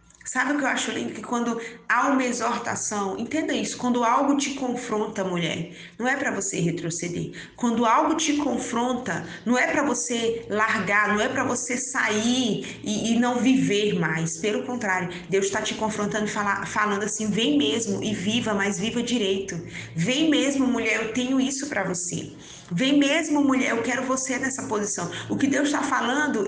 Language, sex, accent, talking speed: Portuguese, female, Brazilian, 180 wpm